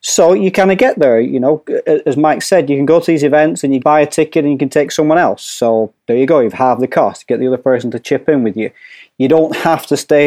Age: 30-49